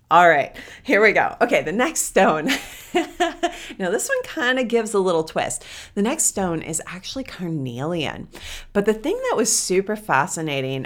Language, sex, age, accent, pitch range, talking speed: English, female, 30-49, American, 150-185 Hz, 170 wpm